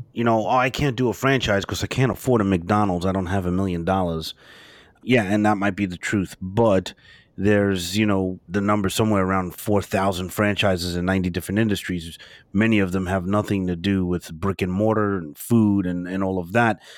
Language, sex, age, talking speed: English, male, 30-49, 205 wpm